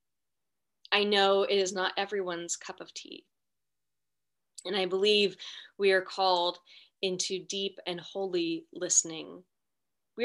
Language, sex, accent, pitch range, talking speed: English, female, American, 185-215 Hz, 125 wpm